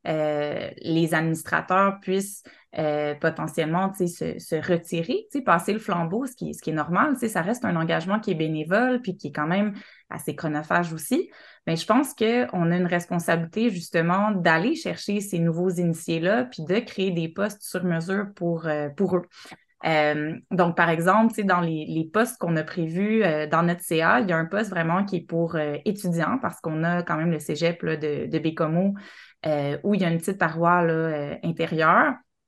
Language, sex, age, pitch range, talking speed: French, female, 20-39, 165-205 Hz, 190 wpm